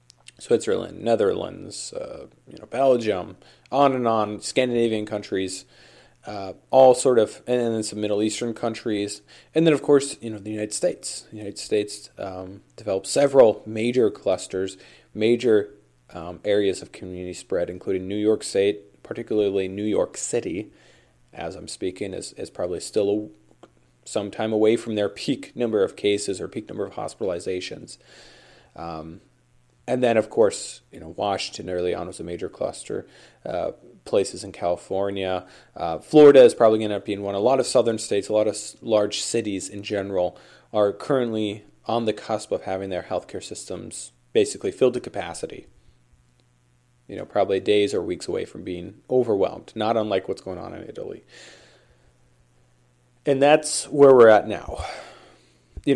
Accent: American